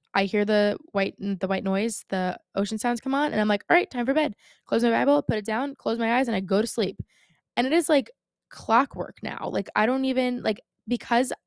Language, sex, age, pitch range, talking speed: English, female, 20-39, 190-245 Hz, 240 wpm